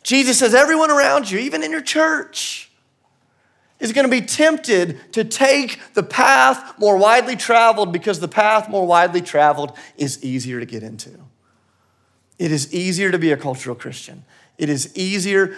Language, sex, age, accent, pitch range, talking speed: English, male, 30-49, American, 140-230 Hz, 160 wpm